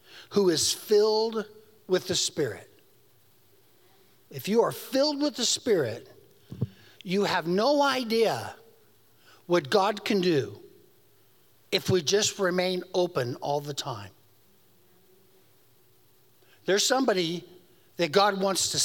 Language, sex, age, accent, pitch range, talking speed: English, male, 60-79, American, 165-230 Hz, 110 wpm